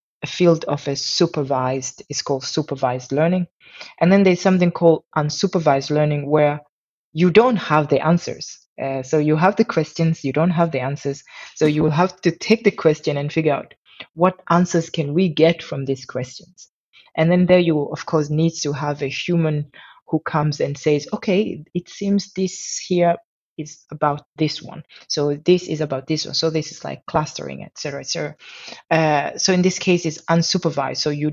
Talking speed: 190 wpm